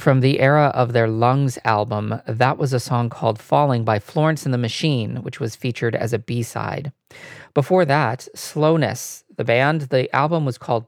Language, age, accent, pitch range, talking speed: English, 40-59, American, 115-135 Hz, 180 wpm